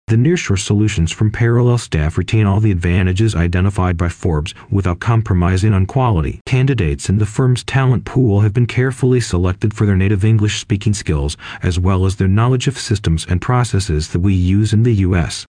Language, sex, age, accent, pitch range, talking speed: English, male, 40-59, American, 90-115 Hz, 185 wpm